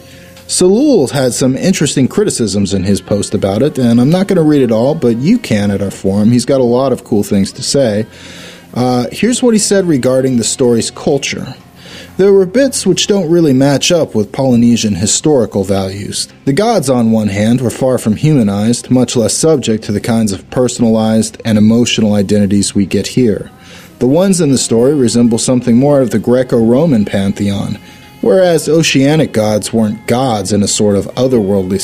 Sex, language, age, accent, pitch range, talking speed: male, English, 30-49, American, 105-135 Hz, 185 wpm